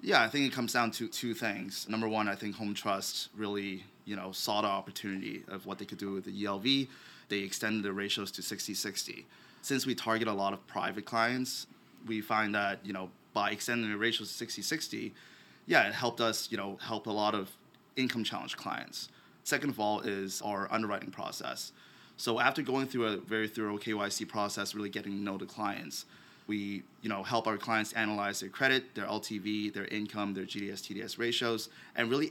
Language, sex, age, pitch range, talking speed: English, male, 20-39, 100-115 Hz, 200 wpm